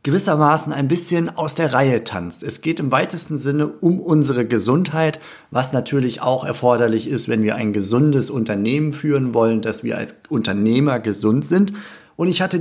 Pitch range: 115-150 Hz